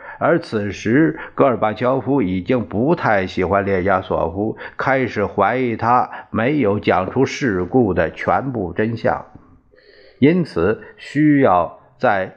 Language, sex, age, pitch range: Chinese, male, 50-69, 95-140 Hz